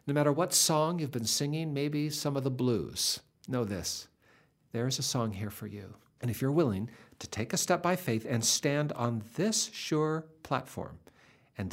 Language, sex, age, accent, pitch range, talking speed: English, male, 60-79, American, 100-140 Hz, 195 wpm